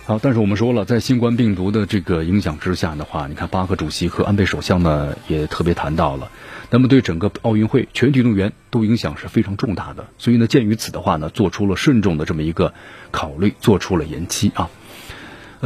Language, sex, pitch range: Chinese, male, 95-125 Hz